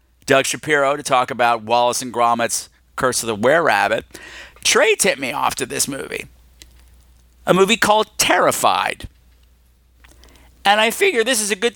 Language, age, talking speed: English, 50-69, 155 wpm